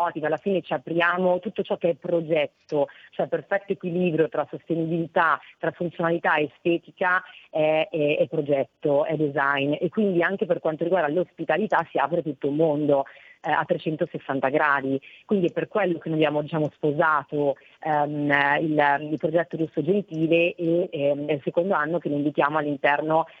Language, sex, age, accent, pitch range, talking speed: Italian, female, 30-49, native, 145-170 Hz, 160 wpm